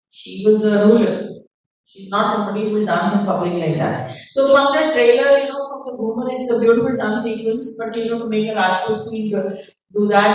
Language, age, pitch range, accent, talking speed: English, 40-59, 195-235 Hz, Indian, 225 wpm